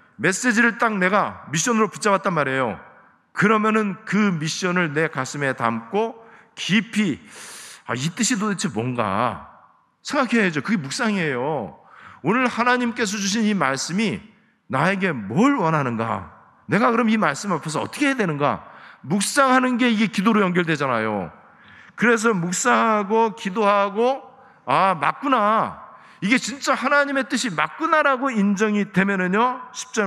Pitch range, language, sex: 170-240 Hz, Korean, male